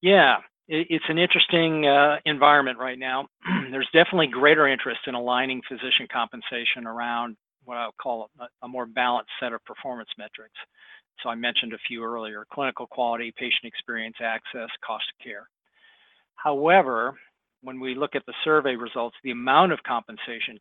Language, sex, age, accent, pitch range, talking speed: English, male, 40-59, American, 120-145 Hz, 155 wpm